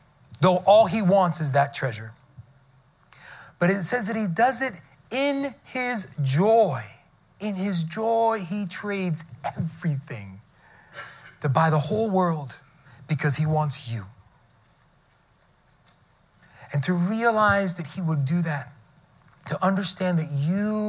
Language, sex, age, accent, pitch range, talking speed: English, male, 30-49, American, 140-190 Hz, 125 wpm